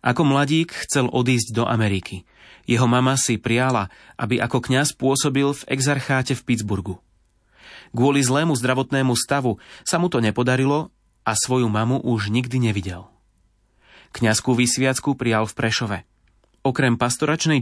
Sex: male